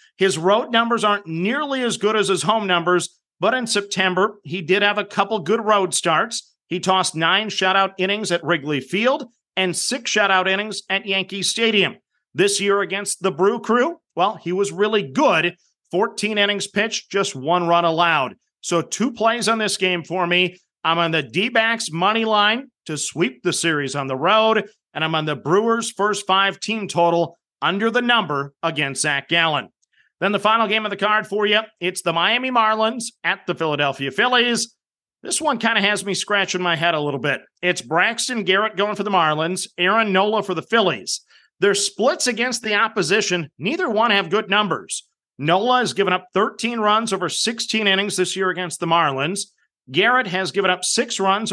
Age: 40-59